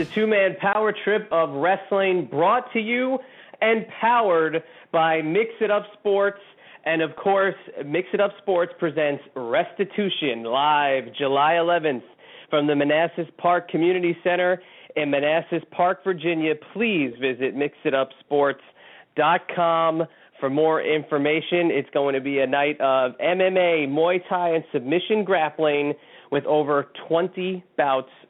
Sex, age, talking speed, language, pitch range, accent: male, 30-49, 130 wpm, English, 140-180 Hz, American